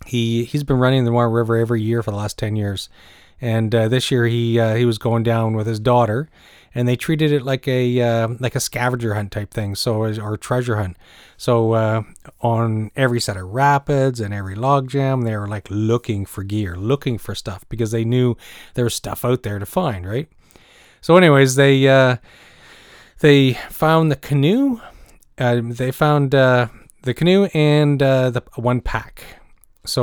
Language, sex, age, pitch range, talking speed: English, male, 30-49, 110-135 Hz, 190 wpm